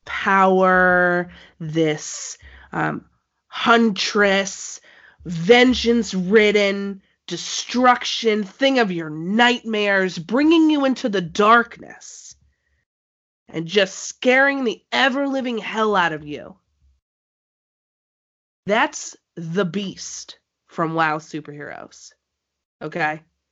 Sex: female